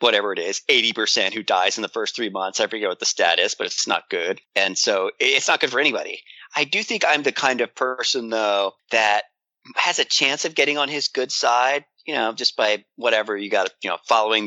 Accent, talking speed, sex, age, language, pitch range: American, 230 wpm, male, 30-49, English, 100-150 Hz